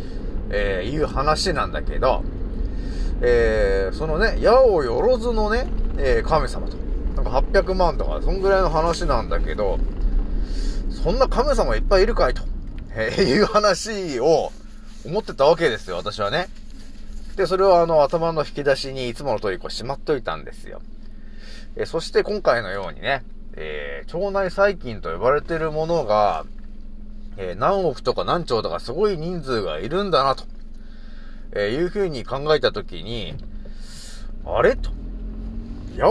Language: Japanese